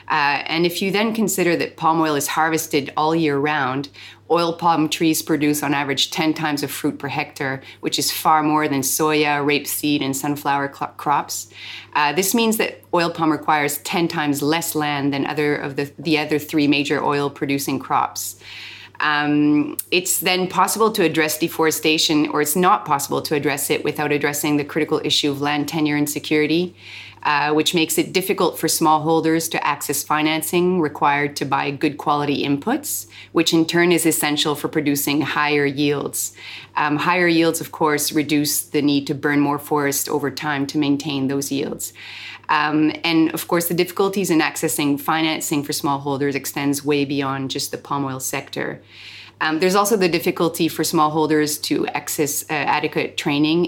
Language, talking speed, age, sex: English, 175 wpm, 30-49, female